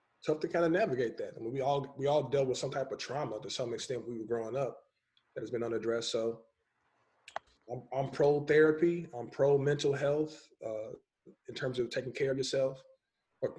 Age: 20-39